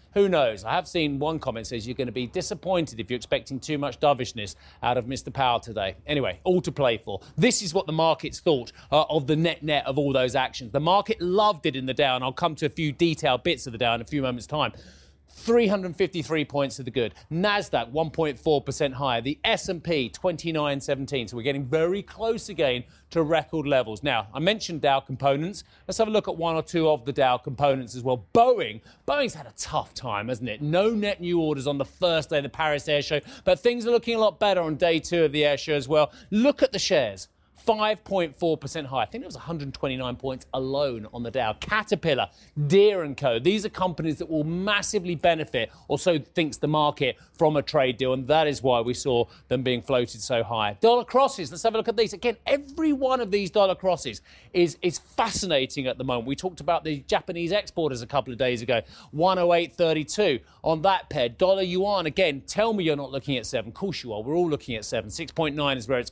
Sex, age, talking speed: male, 30-49, 225 wpm